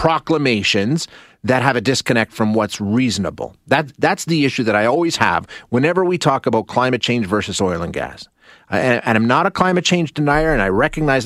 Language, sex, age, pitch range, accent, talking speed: English, male, 30-49, 110-140 Hz, American, 195 wpm